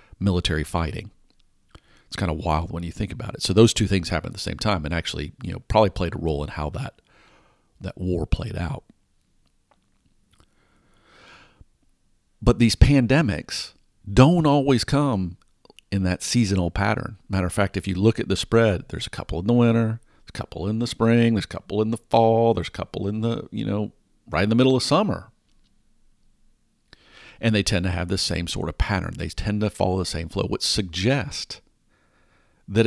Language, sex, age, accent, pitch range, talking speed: English, male, 50-69, American, 90-115 Hz, 190 wpm